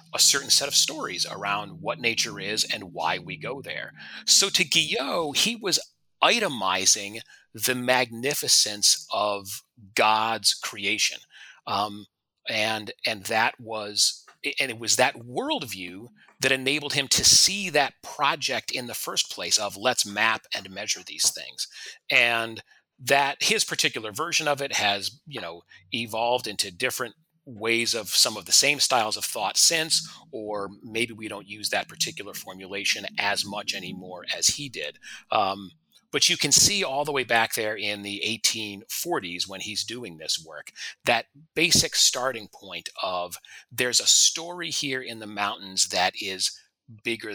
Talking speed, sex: 155 wpm, male